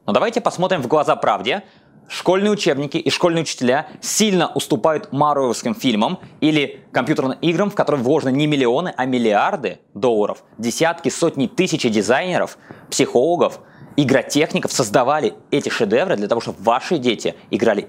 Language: Russian